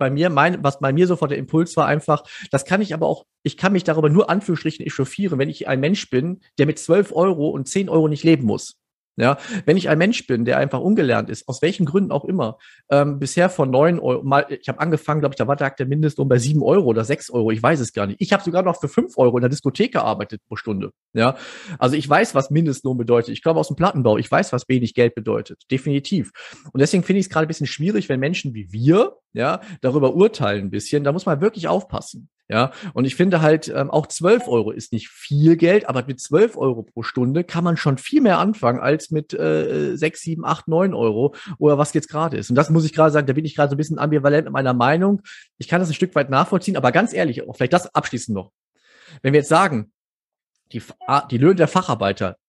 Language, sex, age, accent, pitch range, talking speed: German, male, 40-59, German, 130-170 Hz, 240 wpm